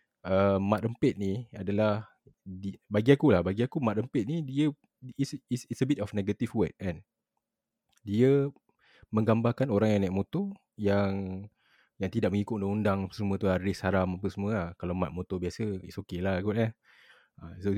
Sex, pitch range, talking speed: male, 95-125 Hz, 180 wpm